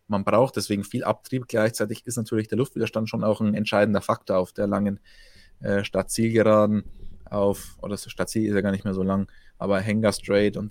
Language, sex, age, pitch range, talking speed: German, male, 20-39, 100-115 Hz, 190 wpm